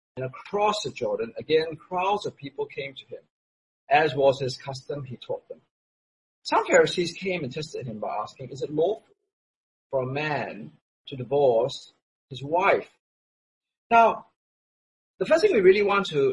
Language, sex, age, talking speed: English, male, 40-59, 160 wpm